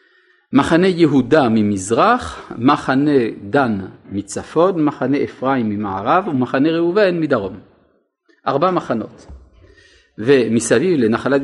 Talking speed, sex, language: 85 wpm, male, Hebrew